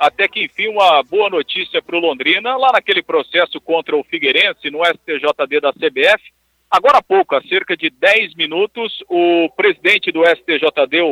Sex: male